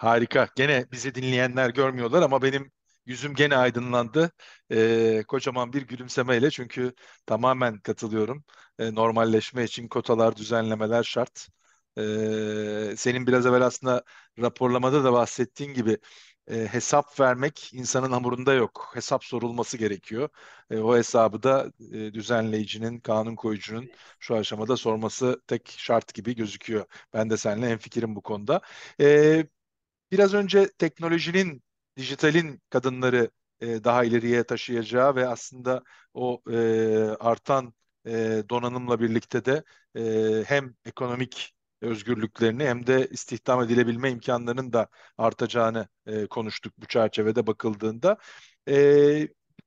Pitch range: 115-135 Hz